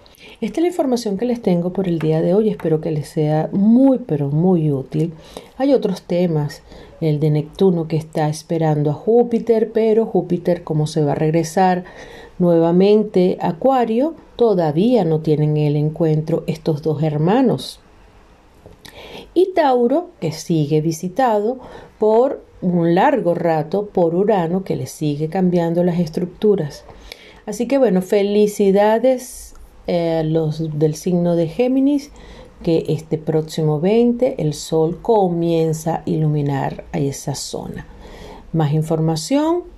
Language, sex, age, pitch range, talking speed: Spanish, female, 40-59, 155-210 Hz, 135 wpm